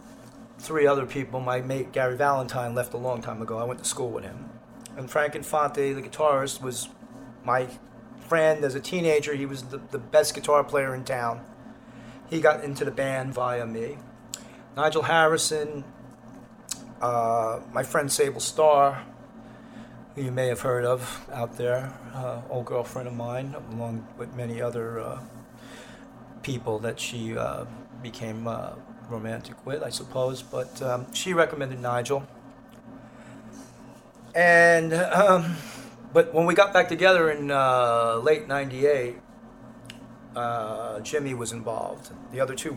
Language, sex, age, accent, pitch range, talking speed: English, male, 40-59, American, 120-145 Hz, 145 wpm